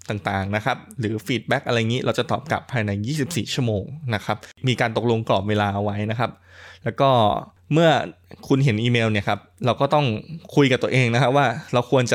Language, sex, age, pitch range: Thai, male, 20-39, 105-130 Hz